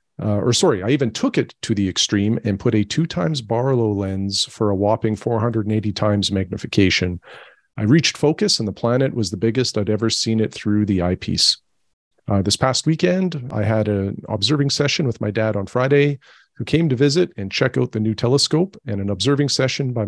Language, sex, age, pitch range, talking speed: English, male, 40-59, 105-130 Hz, 205 wpm